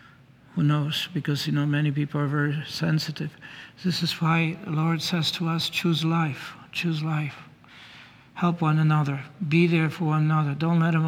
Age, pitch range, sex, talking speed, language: 60-79, 145-160 Hz, male, 180 wpm, English